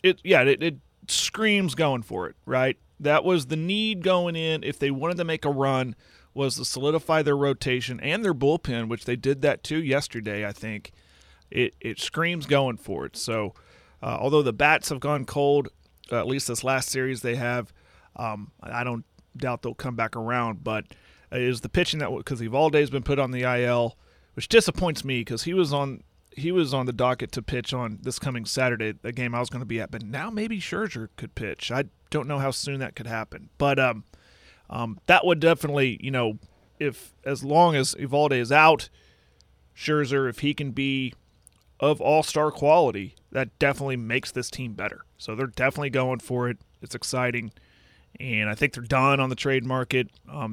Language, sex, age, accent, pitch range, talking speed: English, male, 40-59, American, 115-145 Hz, 200 wpm